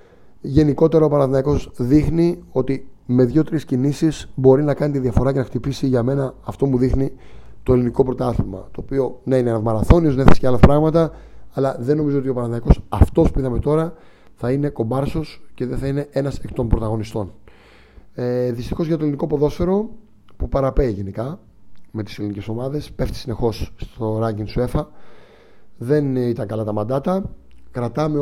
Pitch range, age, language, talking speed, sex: 115-145 Hz, 30-49, Greek, 170 wpm, male